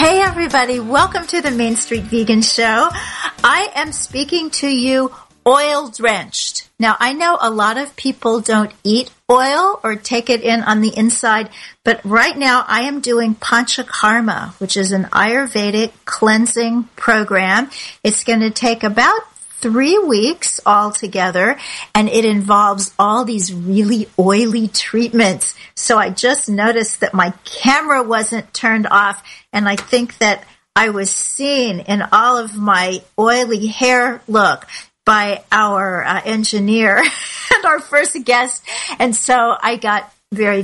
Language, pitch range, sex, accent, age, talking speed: English, 210-250 Hz, female, American, 50-69, 145 wpm